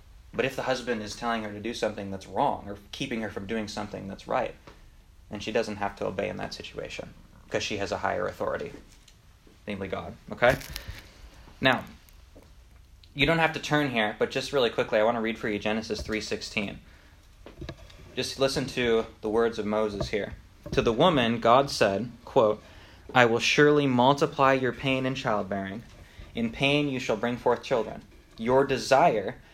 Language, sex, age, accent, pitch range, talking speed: English, male, 20-39, American, 100-135 Hz, 180 wpm